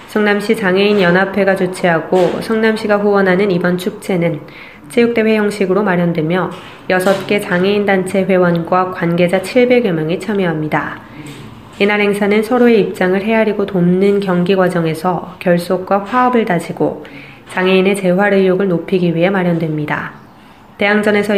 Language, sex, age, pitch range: Korean, female, 20-39, 180-210 Hz